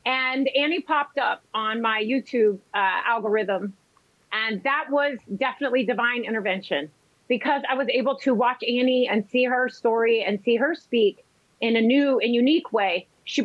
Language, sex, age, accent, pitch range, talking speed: English, female, 30-49, American, 230-285 Hz, 165 wpm